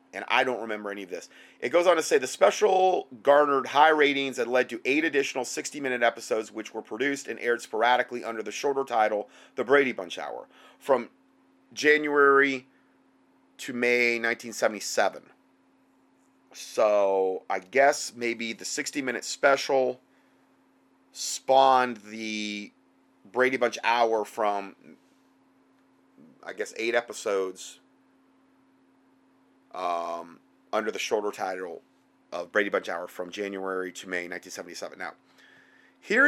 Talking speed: 125 wpm